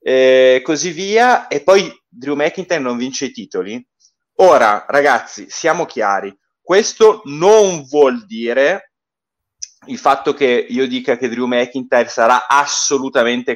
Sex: male